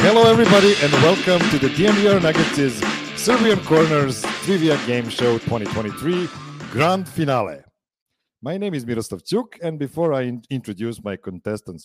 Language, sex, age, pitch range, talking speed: English, male, 50-69, 105-145 Hz, 135 wpm